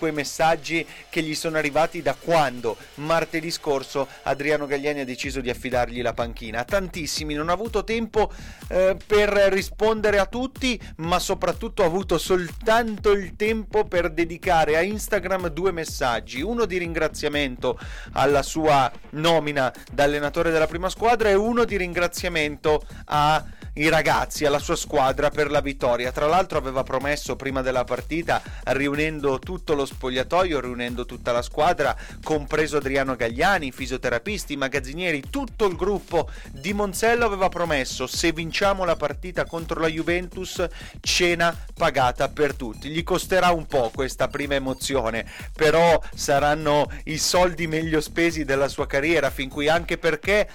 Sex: male